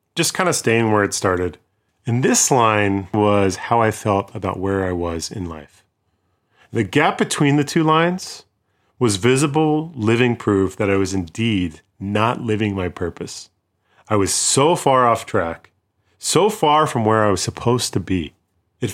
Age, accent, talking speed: 30-49, American, 170 wpm